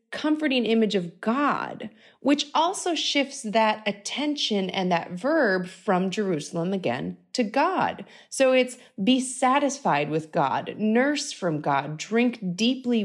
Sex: female